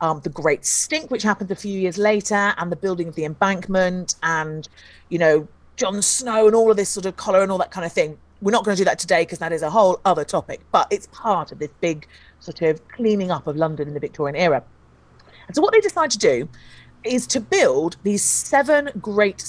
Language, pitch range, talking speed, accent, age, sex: English, 170-225 Hz, 235 wpm, British, 40-59, female